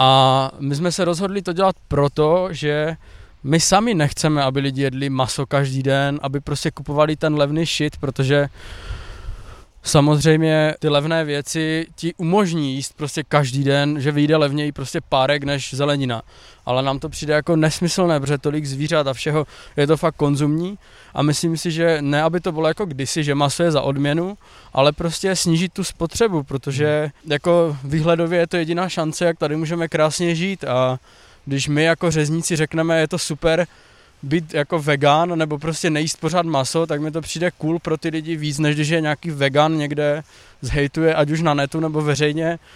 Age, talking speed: 20-39, 175 wpm